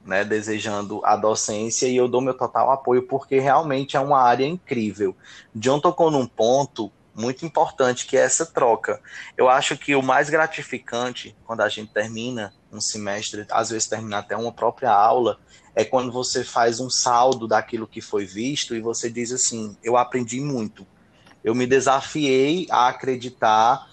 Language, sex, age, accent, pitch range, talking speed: Portuguese, male, 20-39, Brazilian, 115-140 Hz, 170 wpm